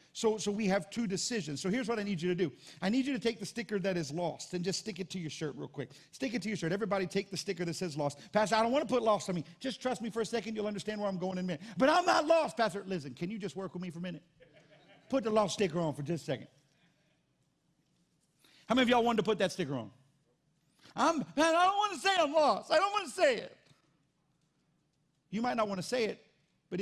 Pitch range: 165-230 Hz